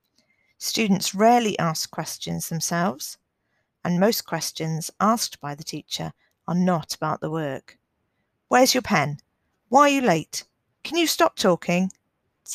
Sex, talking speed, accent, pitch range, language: female, 140 wpm, British, 165-215 Hz, English